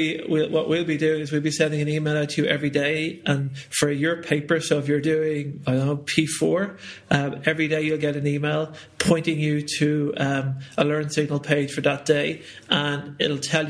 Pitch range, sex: 140-155 Hz, male